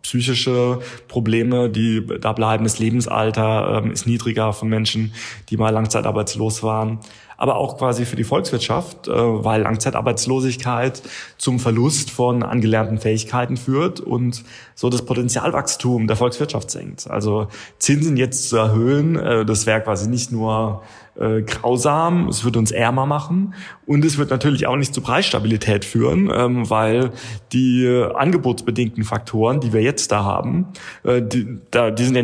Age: 20-39